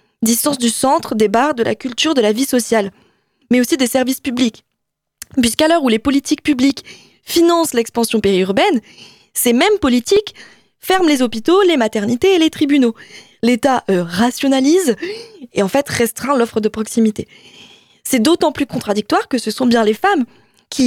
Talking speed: 165 wpm